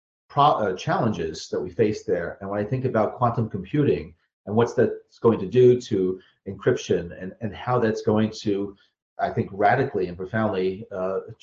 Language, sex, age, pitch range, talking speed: English, male, 40-59, 100-145 Hz, 170 wpm